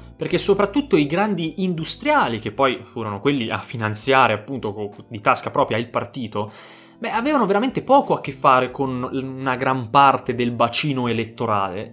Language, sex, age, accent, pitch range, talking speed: Italian, male, 20-39, native, 120-175 Hz, 155 wpm